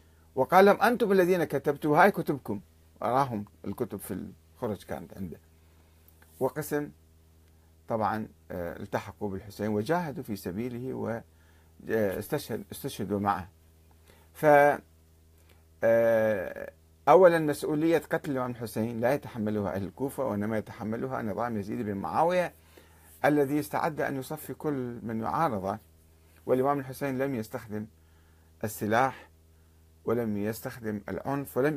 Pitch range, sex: 80-135 Hz, male